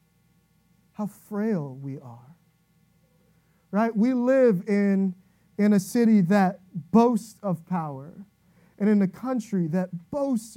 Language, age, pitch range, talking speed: English, 30-49, 175-235 Hz, 120 wpm